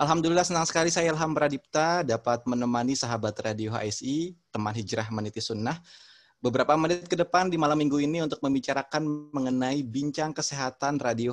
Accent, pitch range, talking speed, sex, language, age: native, 115-150 Hz, 155 wpm, male, Indonesian, 20-39